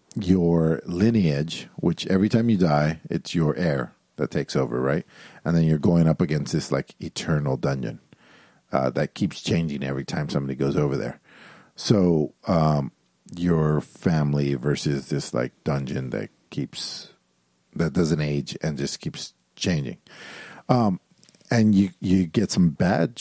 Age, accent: 50-69, American